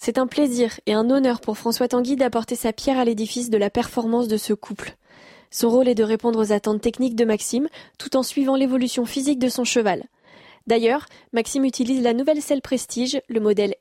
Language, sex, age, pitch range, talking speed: French, female, 10-29, 225-270 Hz, 205 wpm